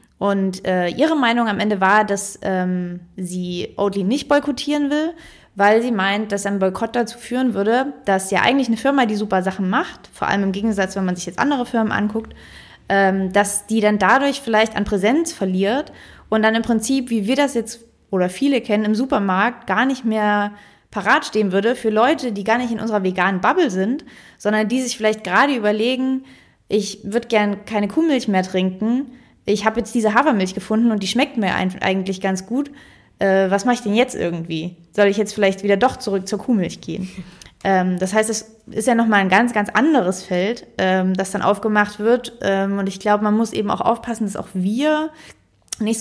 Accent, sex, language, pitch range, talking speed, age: German, female, German, 195-235 Hz, 200 wpm, 20-39